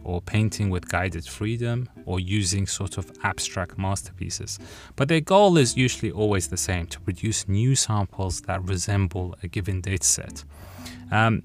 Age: 30-49